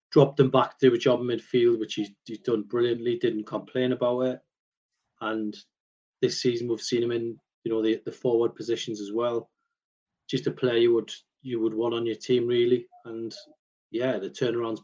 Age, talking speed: 30-49, 200 wpm